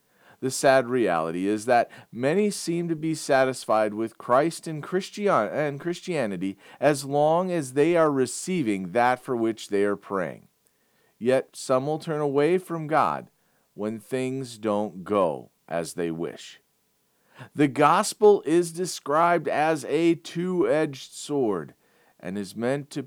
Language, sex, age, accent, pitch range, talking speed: English, male, 40-59, American, 105-145 Hz, 135 wpm